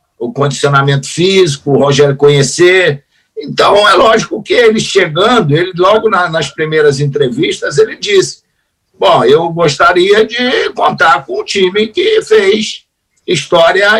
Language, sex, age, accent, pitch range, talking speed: Portuguese, male, 60-79, Brazilian, 170-245 Hz, 135 wpm